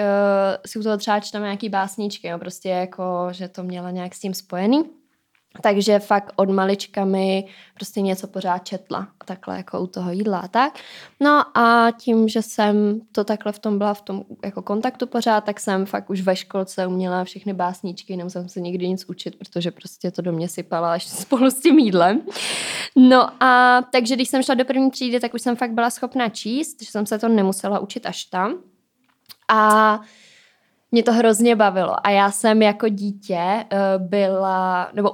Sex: female